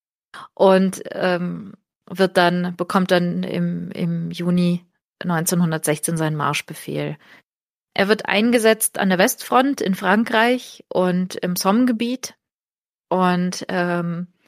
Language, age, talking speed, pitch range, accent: German, 30-49, 105 wpm, 170-200 Hz, German